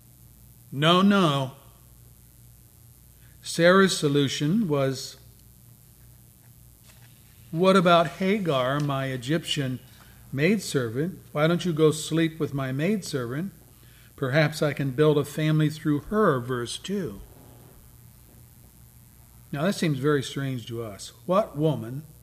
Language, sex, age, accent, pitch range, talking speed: English, male, 50-69, American, 120-150 Hz, 105 wpm